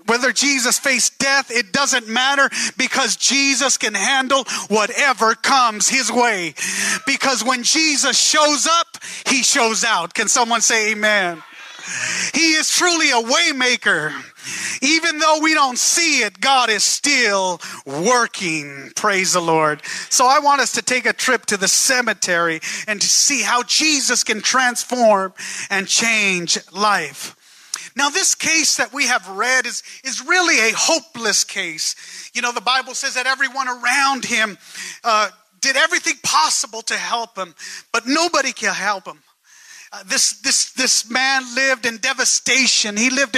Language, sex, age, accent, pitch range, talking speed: English, male, 30-49, American, 215-275 Hz, 155 wpm